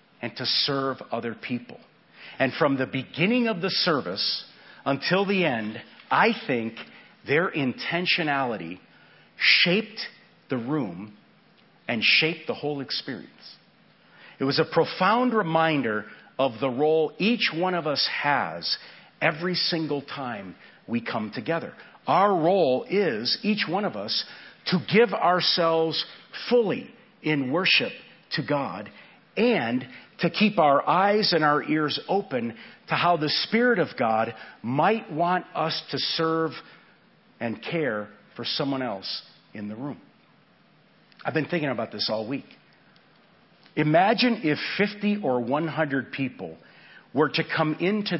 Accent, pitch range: American, 135-185 Hz